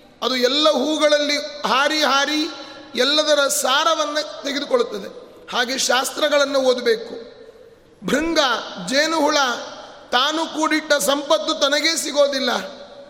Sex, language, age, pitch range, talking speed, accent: male, Kannada, 30-49, 255-300 Hz, 80 wpm, native